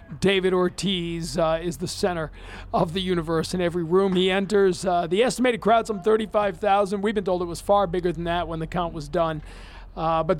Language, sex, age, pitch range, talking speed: English, male, 40-59, 180-210 Hz, 210 wpm